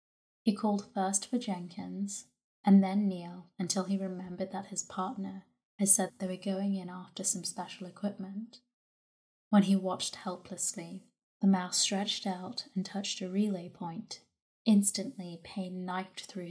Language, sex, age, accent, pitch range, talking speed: English, female, 20-39, British, 185-200 Hz, 150 wpm